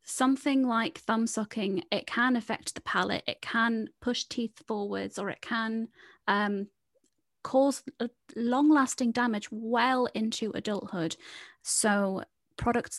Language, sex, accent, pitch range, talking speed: English, female, British, 190-240 Hz, 125 wpm